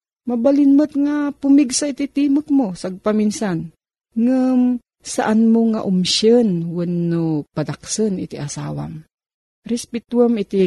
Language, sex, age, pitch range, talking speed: Filipino, female, 40-59, 165-240 Hz, 100 wpm